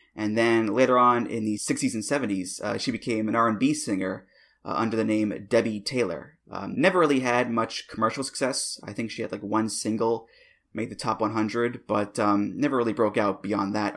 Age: 20-39